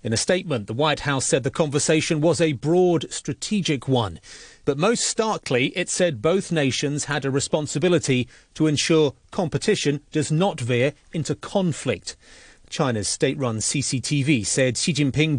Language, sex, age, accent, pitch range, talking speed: English, male, 40-59, British, 115-150 Hz, 150 wpm